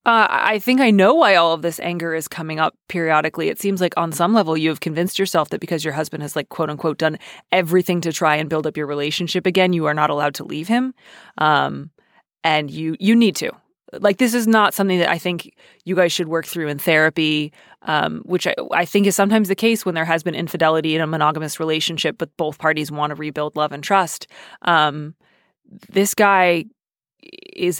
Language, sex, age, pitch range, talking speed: English, female, 30-49, 160-195 Hz, 220 wpm